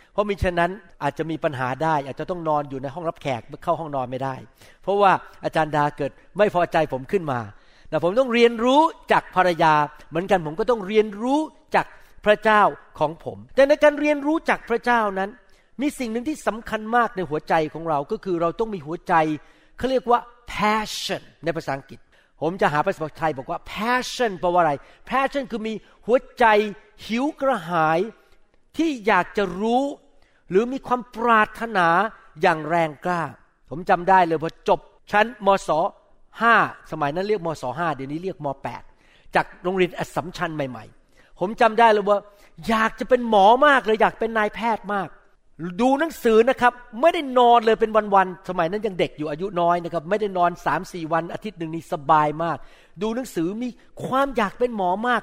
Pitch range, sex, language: 165-230 Hz, male, Thai